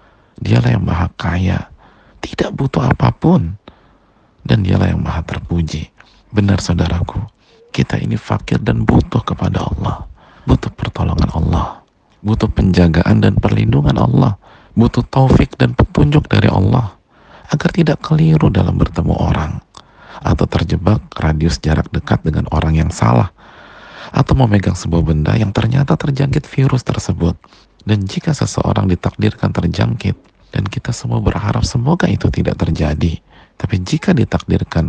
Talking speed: 130 wpm